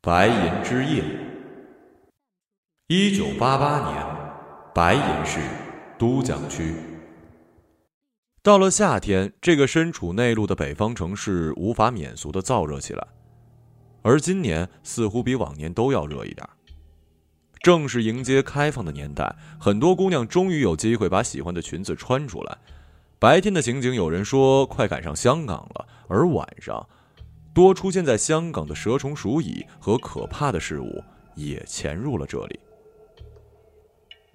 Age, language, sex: 30-49, Chinese, male